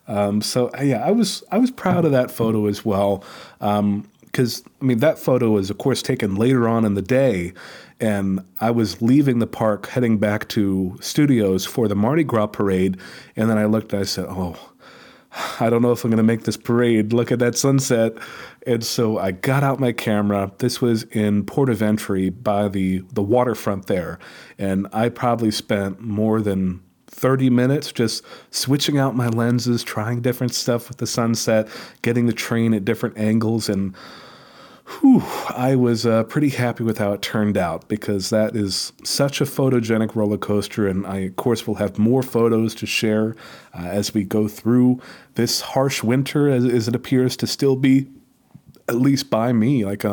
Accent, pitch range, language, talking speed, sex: American, 105-125 Hz, English, 190 wpm, male